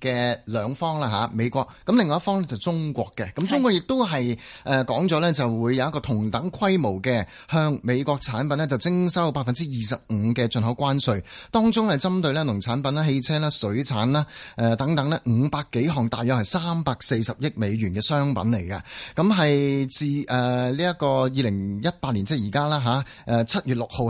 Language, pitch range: Chinese, 115-155 Hz